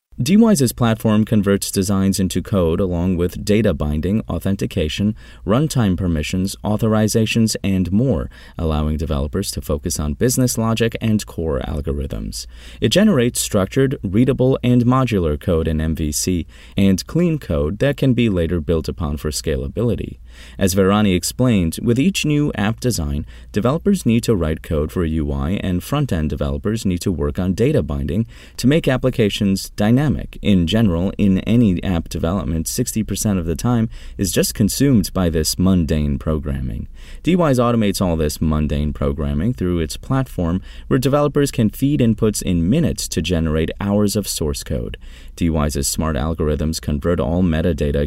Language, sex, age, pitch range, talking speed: English, male, 30-49, 80-115 Hz, 150 wpm